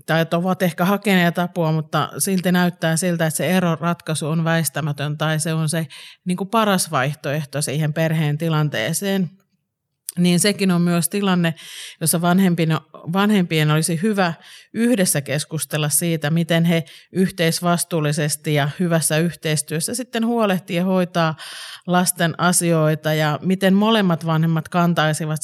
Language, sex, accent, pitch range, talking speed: Finnish, male, native, 155-180 Hz, 125 wpm